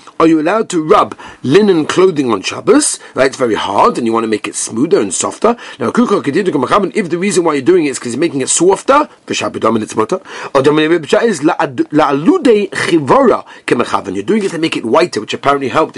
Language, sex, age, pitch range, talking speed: English, male, 40-59, 140-220 Hz, 205 wpm